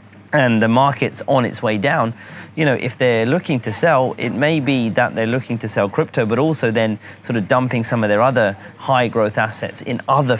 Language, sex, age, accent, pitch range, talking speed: English, male, 30-49, British, 105-130 Hz, 220 wpm